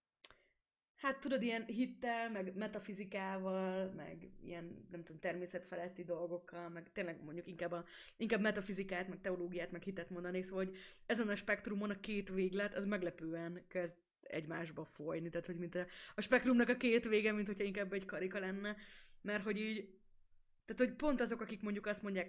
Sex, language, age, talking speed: female, Hungarian, 20-39, 170 wpm